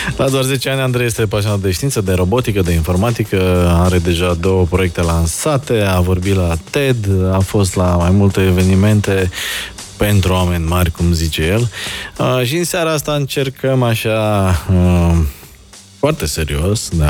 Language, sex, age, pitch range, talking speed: Romanian, male, 20-39, 90-115 Hz, 160 wpm